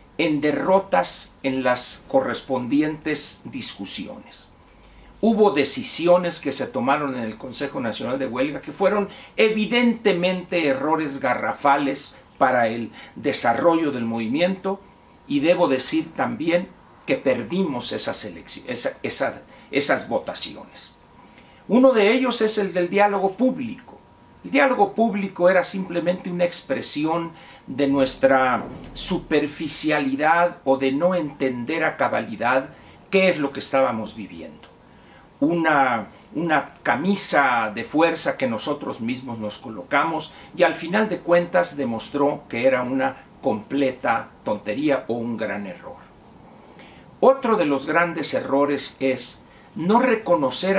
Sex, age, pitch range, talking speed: male, 60-79, 140-195 Hz, 115 wpm